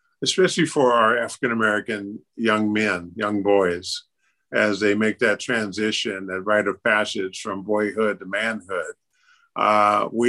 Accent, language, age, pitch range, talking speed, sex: American, English, 50-69, 105-125 Hz, 135 wpm, male